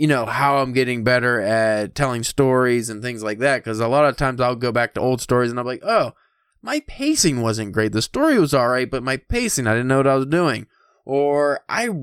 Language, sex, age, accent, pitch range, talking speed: English, male, 20-39, American, 110-145 Hz, 245 wpm